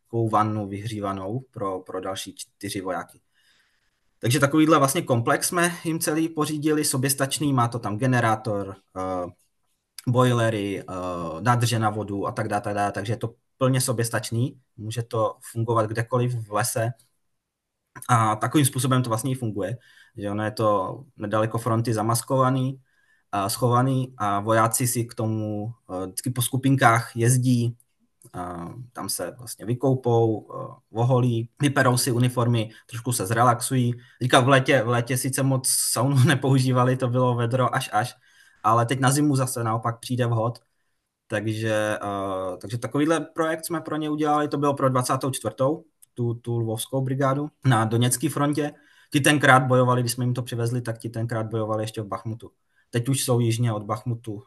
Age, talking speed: 20-39, 155 wpm